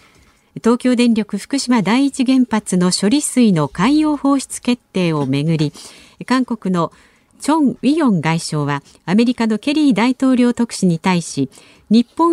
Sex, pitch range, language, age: female, 180-255 Hz, Japanese, 50-69